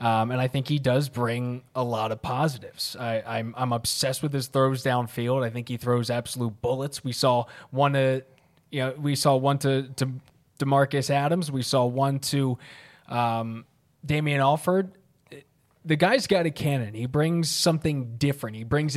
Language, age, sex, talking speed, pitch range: English, 20-39, male, 175 wpm, 125-150 Hz